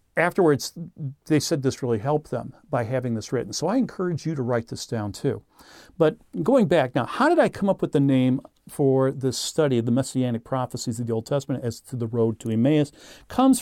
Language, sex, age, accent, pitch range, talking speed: English, male, 50-69, American, 125-170 Hz, 220 wpm